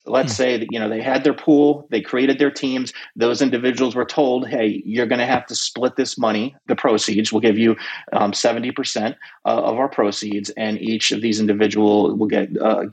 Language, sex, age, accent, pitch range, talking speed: English, male, 30-49, American, 110-135 Hz, 205 wpm